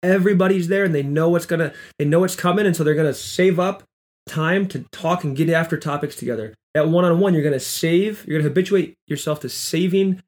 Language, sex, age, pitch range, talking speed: English, male, 20-39, 135-175 Hz, 235 wpm